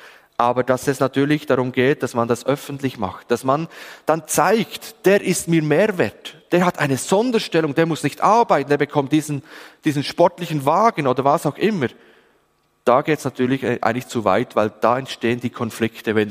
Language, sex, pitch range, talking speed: German, male, 130-180 Hz, 190 wpm